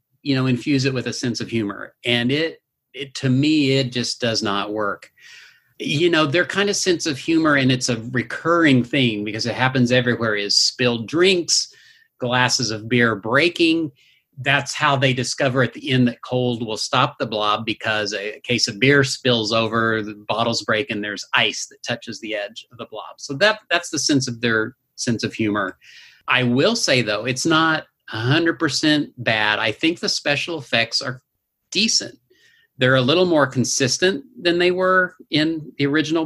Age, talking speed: 40-59, 185 wpm